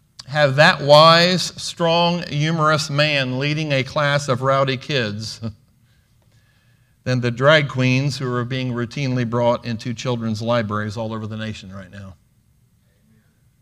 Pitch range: 120-150 Hz